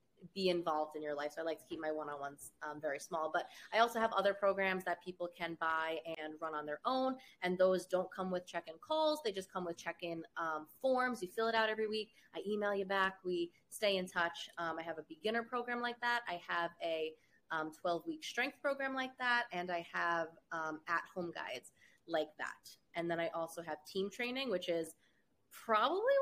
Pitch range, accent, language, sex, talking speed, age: 165-210 Hz, American, English, female, 210 wpm, 20-39